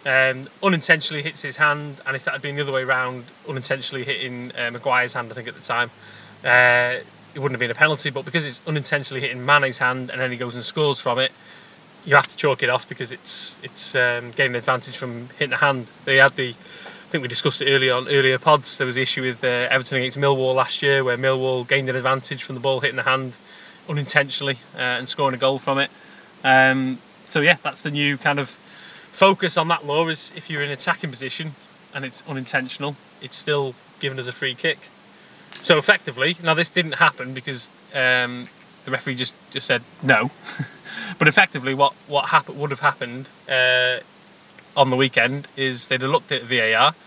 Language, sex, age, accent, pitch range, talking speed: English, male, 20-39, British, 125-145 Hz, 210 wpm